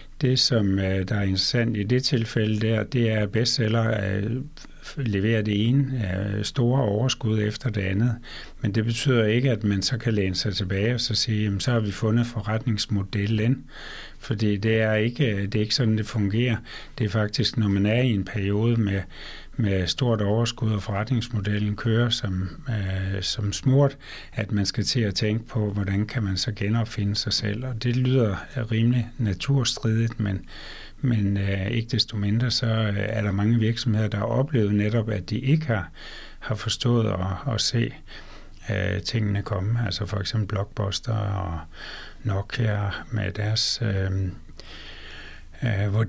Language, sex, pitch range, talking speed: Danish, male, 100-115 Hz, 160 wpm